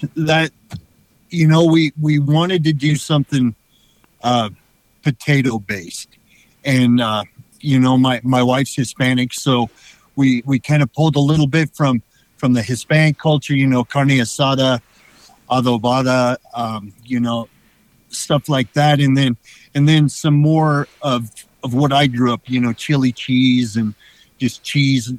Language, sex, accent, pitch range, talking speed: English, male, American, 120-145 Hz, 150 wpm